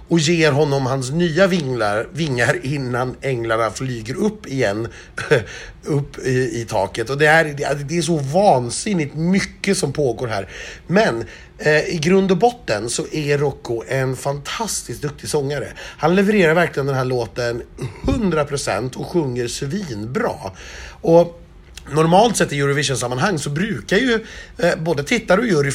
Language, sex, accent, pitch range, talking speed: Swedish, male, native, 130-175 Hz, 150 wpm